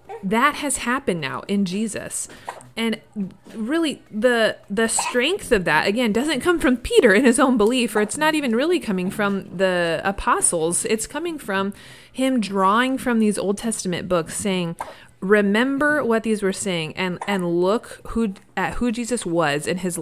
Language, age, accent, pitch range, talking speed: English, 30-49, American, 175-225 Hz, 170 wpm